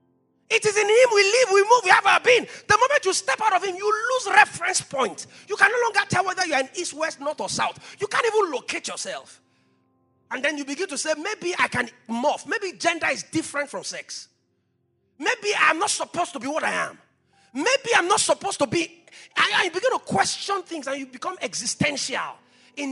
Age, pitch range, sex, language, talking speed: 30-49, 250-385 Hz, male, English, 220 wpm